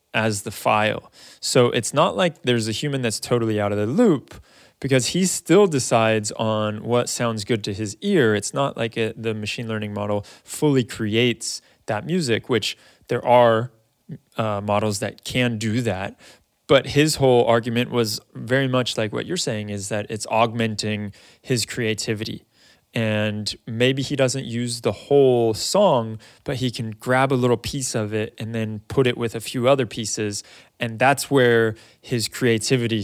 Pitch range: 110-125 Hz